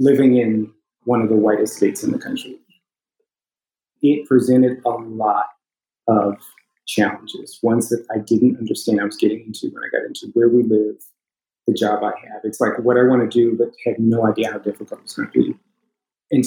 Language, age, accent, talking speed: English, 30-49, American, 195 wpm